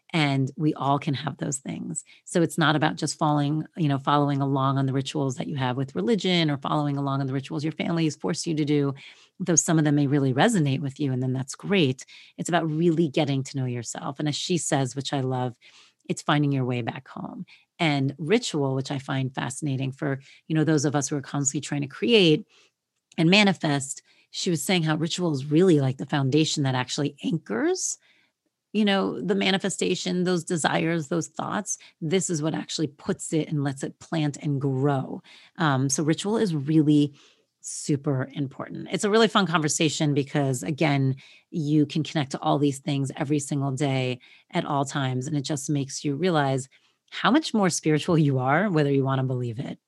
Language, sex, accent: English, female, American